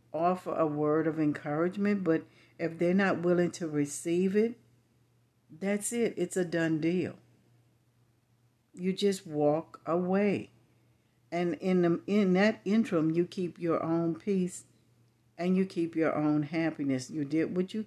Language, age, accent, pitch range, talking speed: English, 60-79, American, 130-175 Hz, 150 wpm